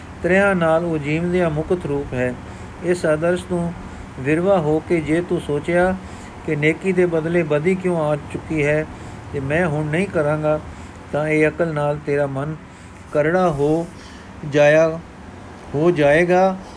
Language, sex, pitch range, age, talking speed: Punjabi, male, 145-175 Hz, 50-69, 145 wpm